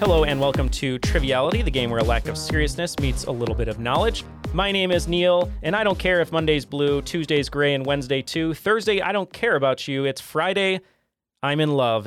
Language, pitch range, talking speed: English, 130-165 Hz, 225 wpm